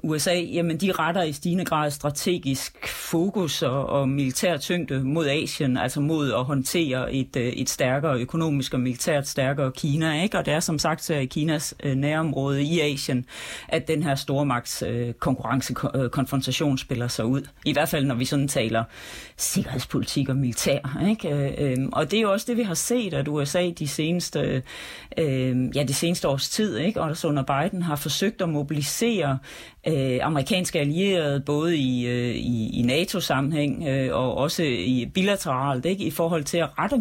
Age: 40-59